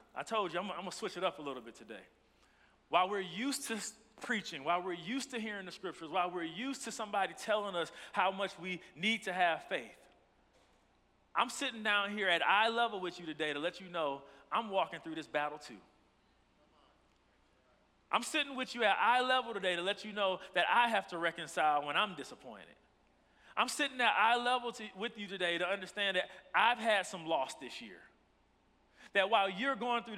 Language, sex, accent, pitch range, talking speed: English, male, American, 180-235 Hz, 200 wpm